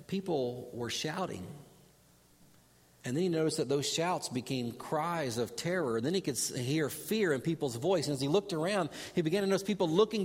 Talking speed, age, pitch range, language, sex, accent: 200 wpm, 40-59, 130-180 Hz, English, male, American